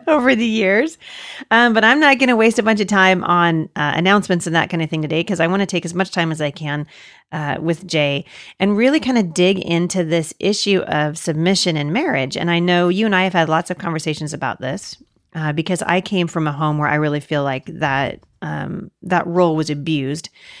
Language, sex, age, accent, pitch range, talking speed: English, female, 40-59, American, 150-185 Hz, 235 wpm